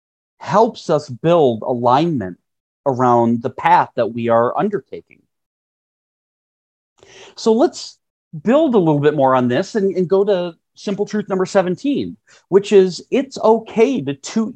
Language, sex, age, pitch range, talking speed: English, male, 40-59, 130-205 Hz, 140 wpm